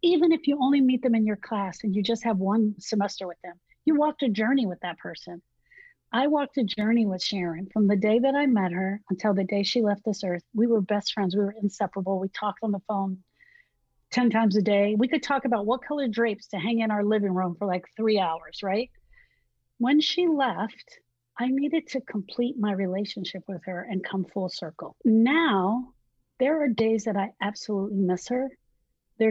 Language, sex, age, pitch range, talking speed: English, female, 40-59, 195-240 Hz, 210 wpm